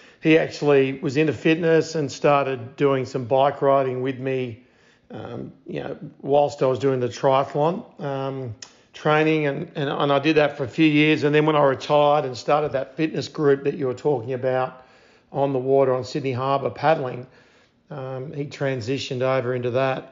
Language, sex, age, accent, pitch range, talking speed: English, male, 50-69, Australian, 130-150 Hz, 185 wpm